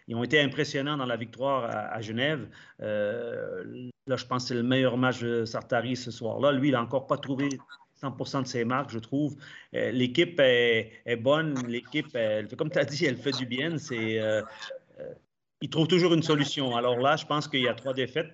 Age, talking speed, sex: 30-49, 215 wpm, male